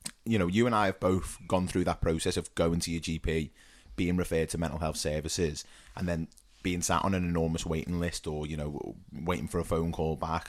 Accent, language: British, English